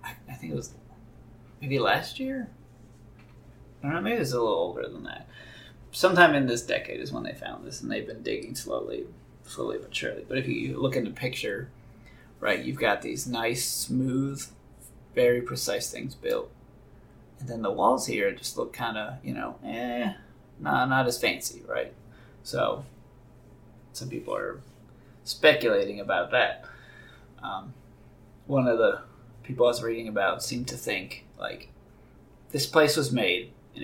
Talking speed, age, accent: 165 wpm, 30-49, American